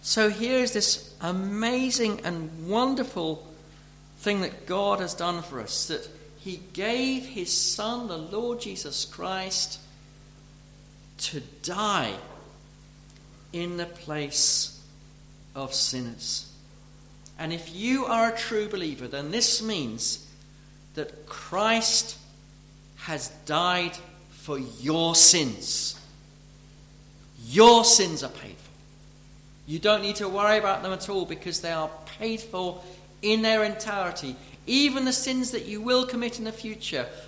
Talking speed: 125 wpm